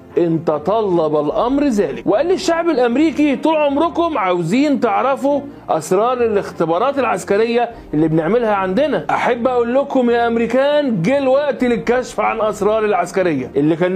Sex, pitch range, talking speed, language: male, 195-255 Hz, 130 wpm, Arabic